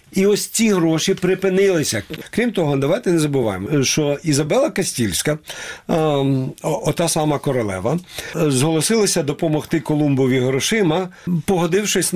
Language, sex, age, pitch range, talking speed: Ukrainian, male, 50-69, 135-175 Hz, 115 wpm